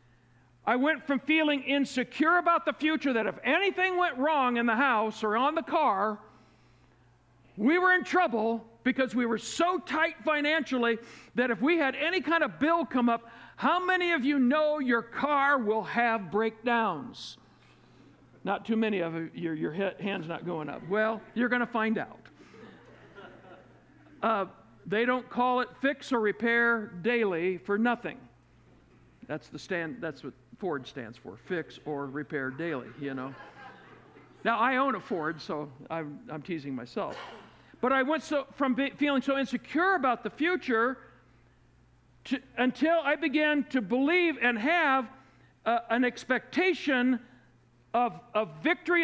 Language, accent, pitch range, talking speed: English, American, 210-290 Hz, 155 wpm